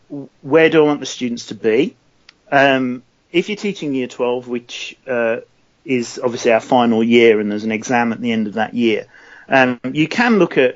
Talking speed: 200 wpm